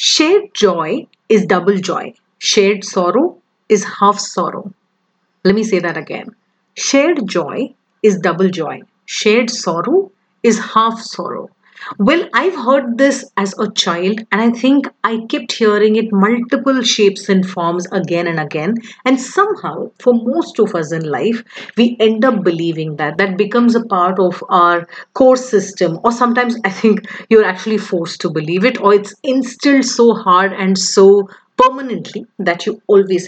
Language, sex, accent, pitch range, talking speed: English, female, Indian, 190-245 Hz, 160 wpm